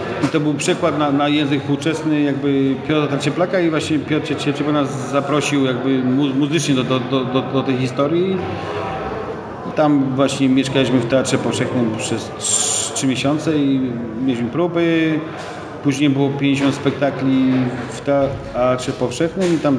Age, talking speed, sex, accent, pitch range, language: 40-59, 140 wpm, male, native, 125-145 Hz, Polish